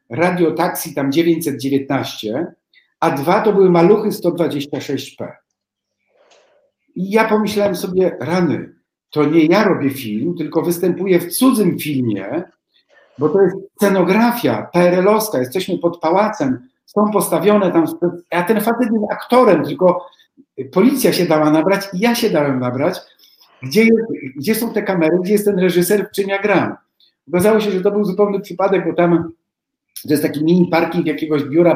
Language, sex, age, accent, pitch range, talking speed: Polish, male, 50-69, native, 140-200 Hz, 150 wpm